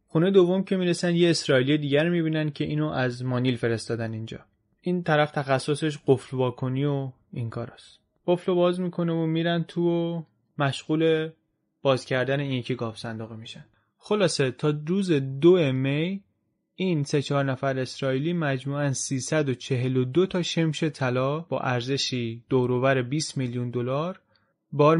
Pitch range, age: 125-155 Hz, 20-39